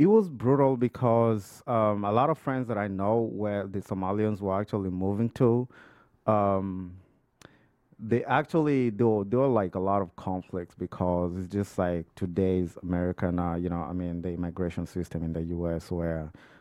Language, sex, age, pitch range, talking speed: English, male, 30-49, 85-105 Hz, 175 wpm